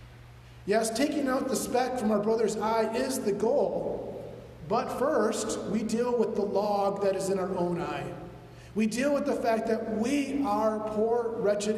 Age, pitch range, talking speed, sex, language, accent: 30-49, 180-220 Hz, 180 wpm, male, English, American